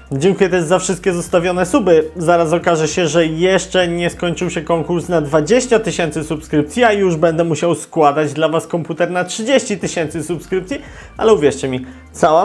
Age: 30-49